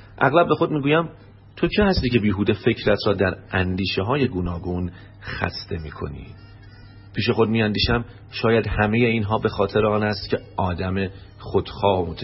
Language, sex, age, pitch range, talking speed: Persian, male, 40-59, 95-110 Hz, 145 wpm